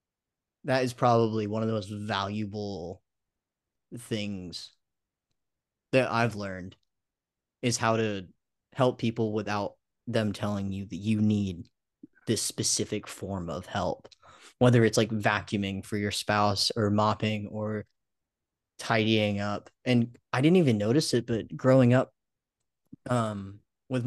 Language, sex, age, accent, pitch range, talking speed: English, male, 20-39, American, 105-120 Hz, 130 wpm